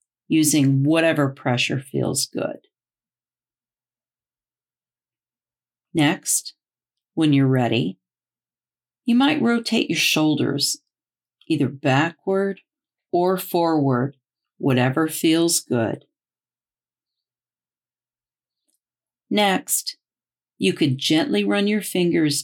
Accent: American